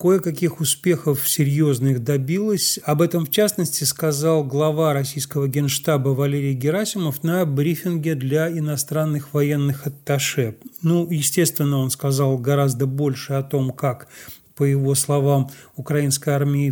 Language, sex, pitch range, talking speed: Russian, male, 140-160 Hz, 120 wpm